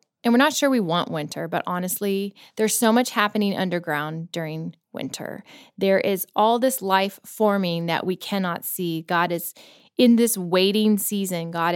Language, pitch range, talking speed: English, 180-220 Hz, 170 wpm